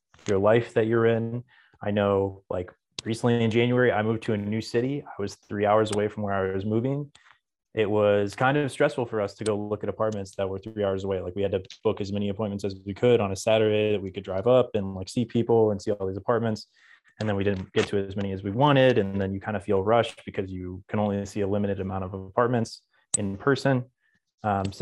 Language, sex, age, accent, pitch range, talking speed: English, male, 20-39, American, 100-120 Hz, 250 wpm